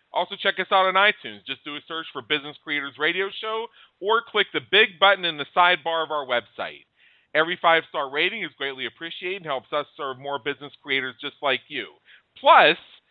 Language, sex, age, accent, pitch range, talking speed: English, male, 40-59, American, 140-180 Hz, 195 wpm